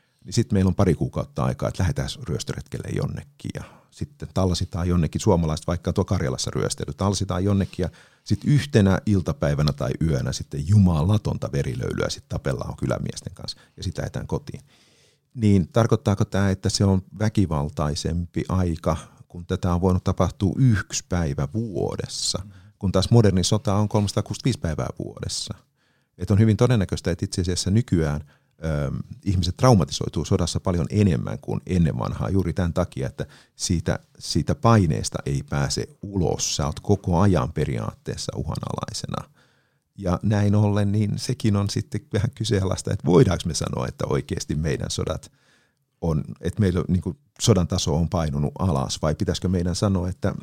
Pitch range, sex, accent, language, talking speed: 90-105 Hz, male, native, Finnish, 150 wpm